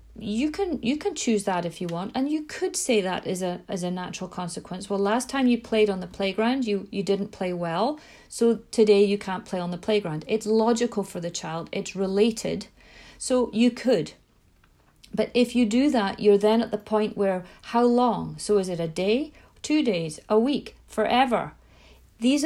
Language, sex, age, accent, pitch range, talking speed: English, female, 40-59, British, 185-235 Hz, 200 wpm